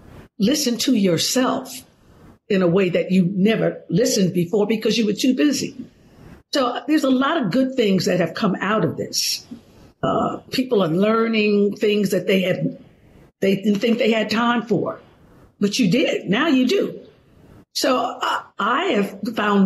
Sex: female